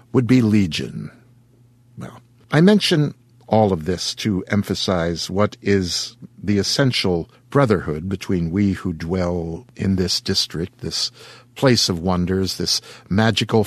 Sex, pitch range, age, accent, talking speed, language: male, 95-125 Hz, 60-79, American, 125 wpm, English